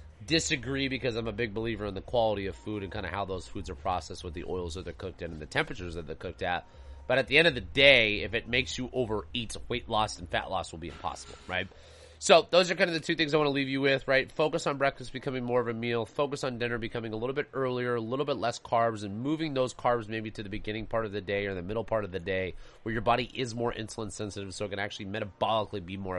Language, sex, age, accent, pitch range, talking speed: English, male, 30-49, American, 95-120 Hz, 280 wpm